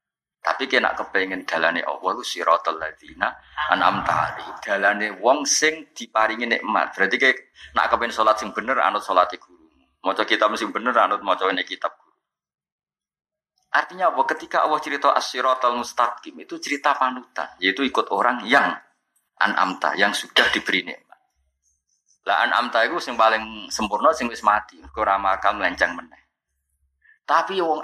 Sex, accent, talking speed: male, native, 145 wpm